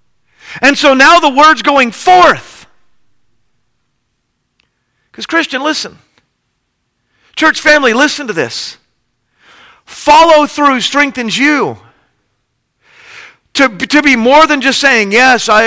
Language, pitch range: English, 235-295 Hz